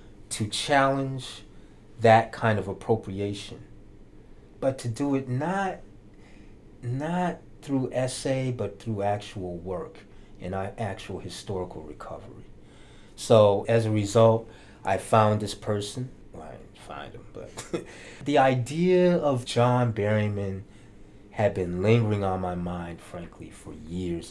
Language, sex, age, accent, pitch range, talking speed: English, male, 30-49, American, 95-120 Hz, 125 wpm